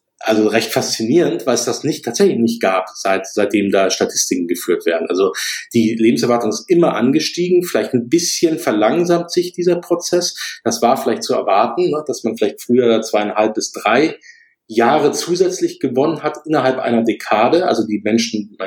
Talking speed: 165 wpm